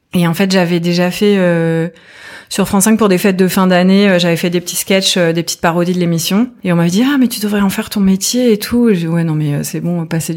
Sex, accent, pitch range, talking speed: female, French, 165-195 Hz, 285 wpm